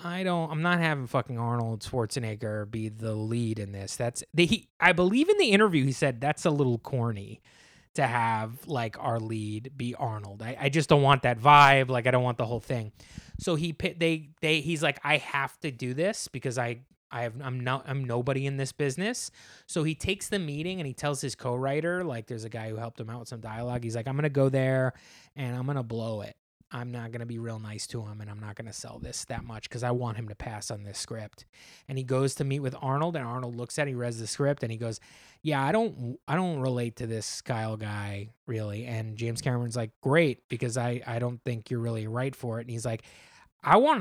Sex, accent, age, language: male, American, 20-39, English